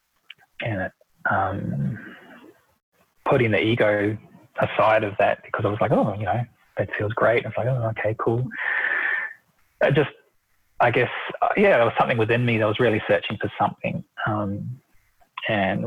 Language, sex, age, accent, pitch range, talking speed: English, male, 20-39, Australian, 105-125 Hz, 165 wpm